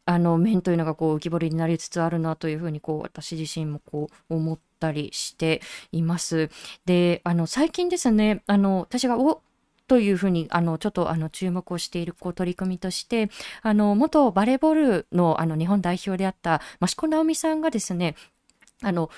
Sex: female